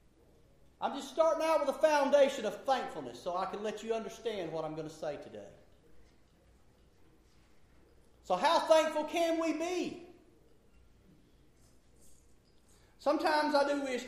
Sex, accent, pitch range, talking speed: male, American, 170-235 Hz, 130 wpm